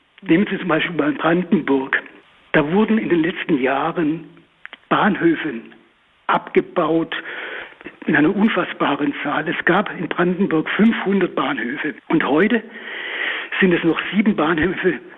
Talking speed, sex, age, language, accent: 125 wpm, male, 60-79, German, German